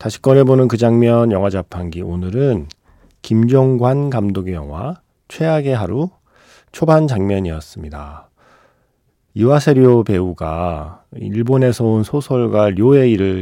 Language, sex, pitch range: Korean, male, 95-130 Hz